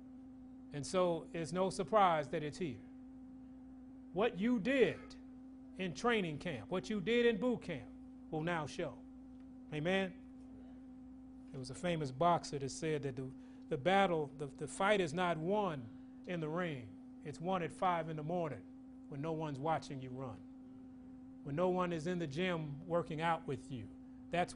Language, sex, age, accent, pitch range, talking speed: English, male, 30-49, American, 165-260 Hz, 170 wpm